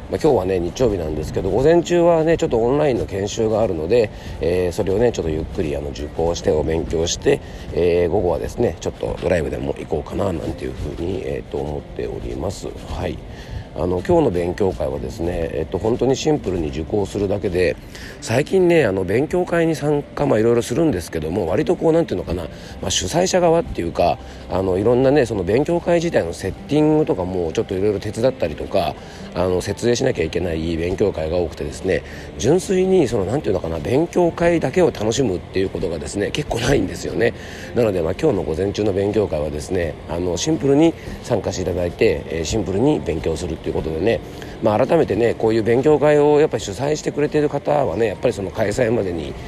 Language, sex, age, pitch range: Japanese, male, 40-59, 90-150 Hz